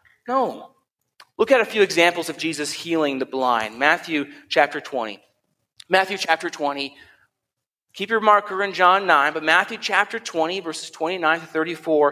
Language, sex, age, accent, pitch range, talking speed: English, male, 40-59, American, 160-265 Hz, 145 wpm